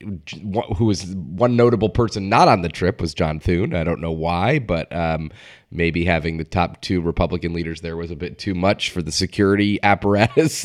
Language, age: English, 30-49